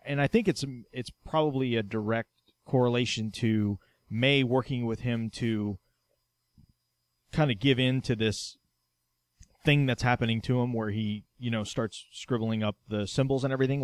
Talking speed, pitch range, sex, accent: 160 wpm, 105-135 Hz, male, American